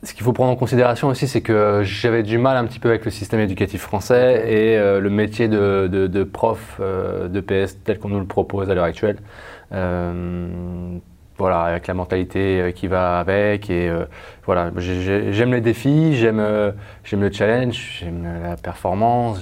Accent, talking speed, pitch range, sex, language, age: French, 180 wpm, 95-115 Hz, male, French, 20-39